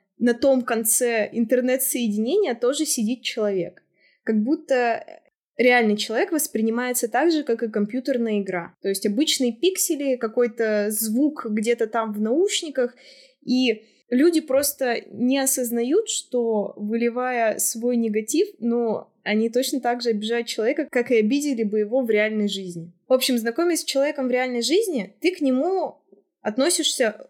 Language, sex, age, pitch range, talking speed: Russian, female, 20-39, 205-255 Hz, 140 wpm